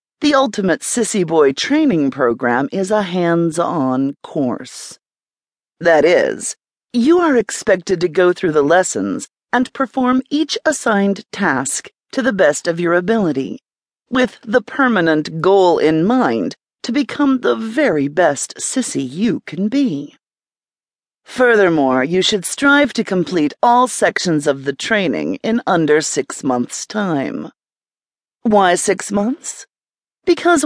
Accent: American